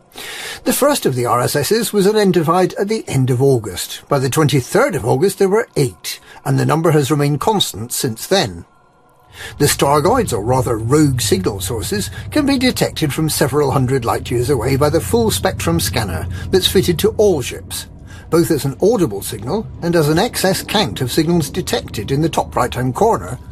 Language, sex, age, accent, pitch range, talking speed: English, male, 50-69, British, 130-185 Hz, 185 wpm